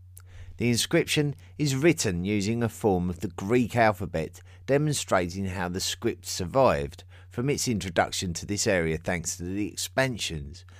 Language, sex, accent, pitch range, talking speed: English, male, British, 90-110 Hz, 145 wpm